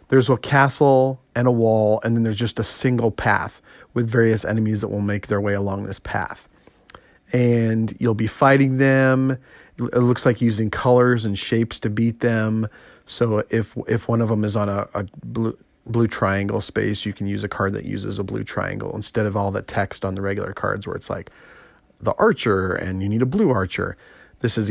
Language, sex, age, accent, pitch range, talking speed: English, male, 30-49, American, 100-120 Hz, 205 wpm